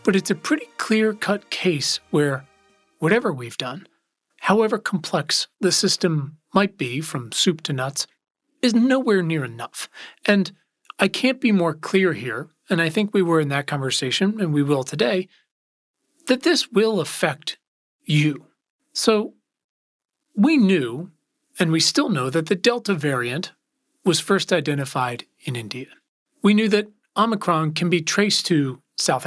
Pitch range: 155-215 Hz